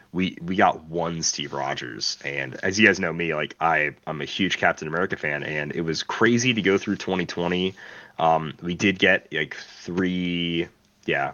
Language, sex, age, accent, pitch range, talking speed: English, male, 30-49, American, 80-105 Hz, 185 wpm